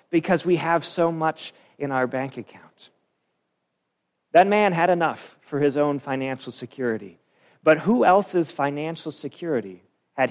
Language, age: English, 40-59